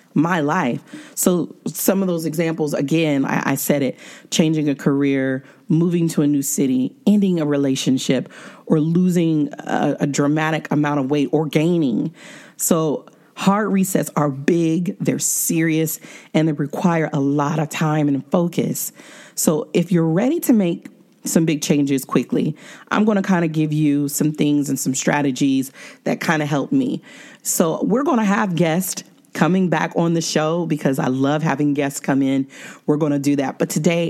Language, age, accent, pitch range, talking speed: English, 40-59, American, 145-175 Hz, 180 wpm